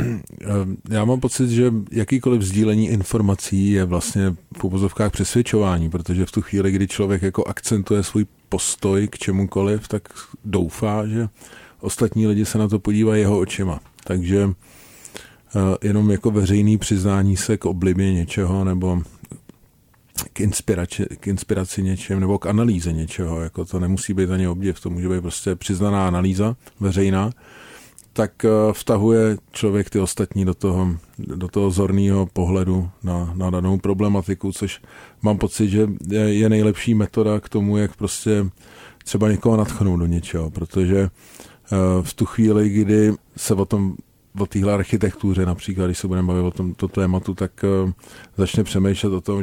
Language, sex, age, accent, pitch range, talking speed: Czech, male, 40-59, native, 95-105 Hz, 145 wpm